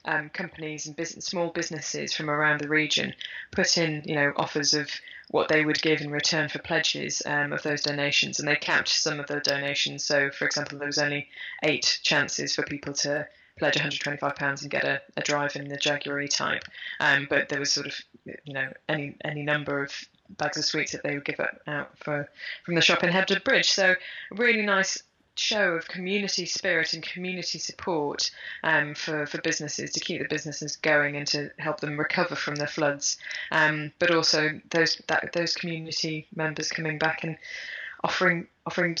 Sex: female